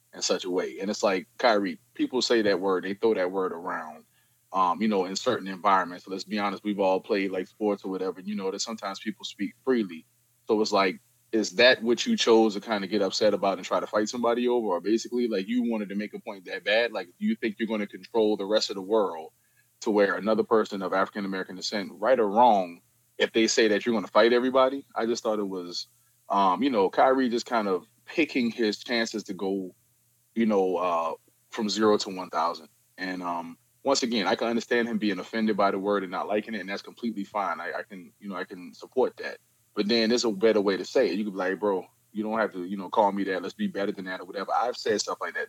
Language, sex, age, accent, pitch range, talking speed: English, male, 20-39, American, 100-120 Hz, 255 wpm